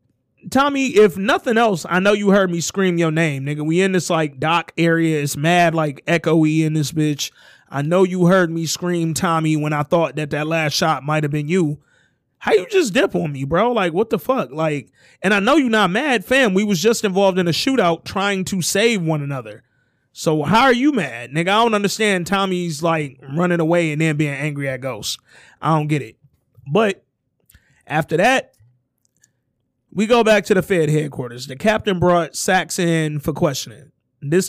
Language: English